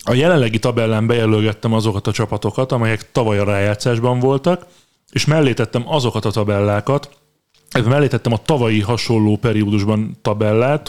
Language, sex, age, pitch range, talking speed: Hungarian, male, 30-49, 110-135 Hz, 140 wpm